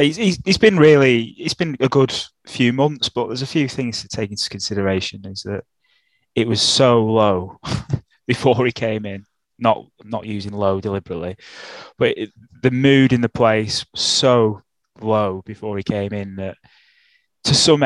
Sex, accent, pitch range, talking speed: male, British, 105-120 Hz, 170 wpm